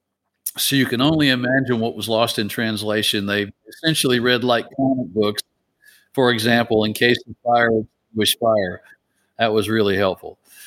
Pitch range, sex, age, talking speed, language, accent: 100-120 Hz, male, 50-69, 155 wpm, English, American